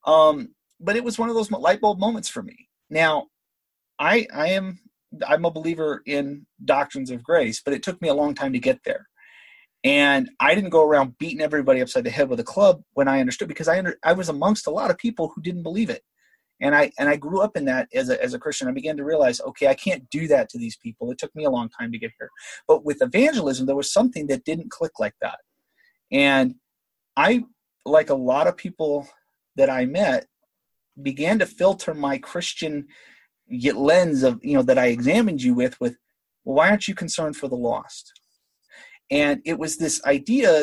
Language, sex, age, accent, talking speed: English, male, 30-49, American, 215 wpm